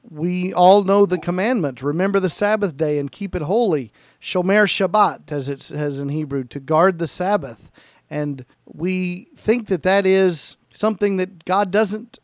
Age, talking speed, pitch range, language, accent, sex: 50-69, 165 wpm, 165-215 Hz, English, American, male